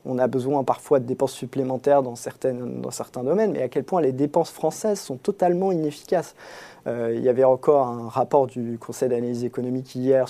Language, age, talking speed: French, 20-39, 200 wpm